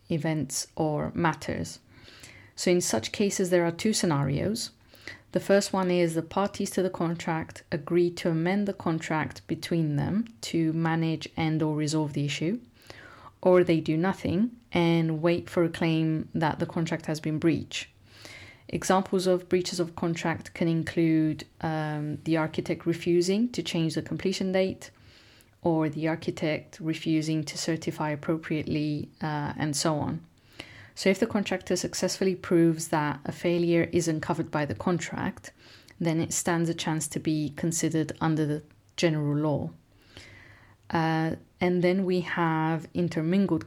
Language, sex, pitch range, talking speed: English, female, 155-180 Hz, 150 wpm